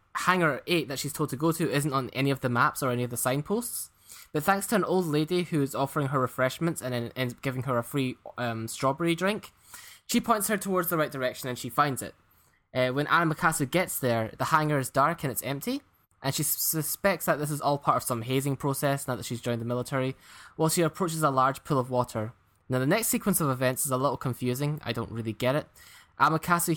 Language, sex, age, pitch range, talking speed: English, male, 10-29, 130-170 Hz, 235 wpm